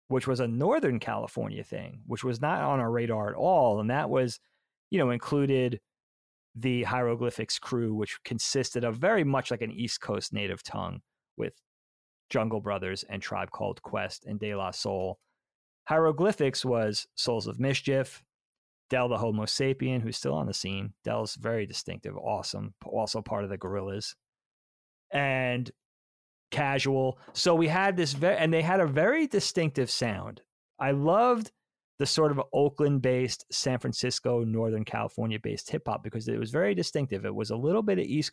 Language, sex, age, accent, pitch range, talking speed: English, male, 30-49, American, 110-145 Hz, 165 wpm